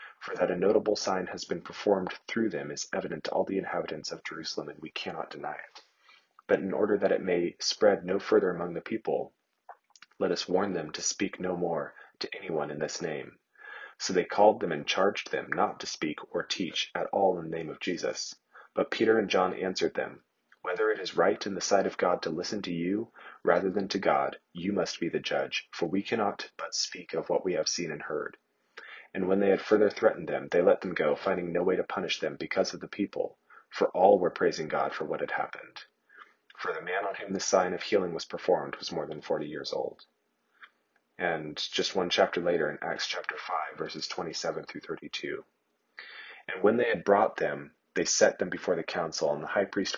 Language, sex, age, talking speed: English, male, 30-49, 220 wpm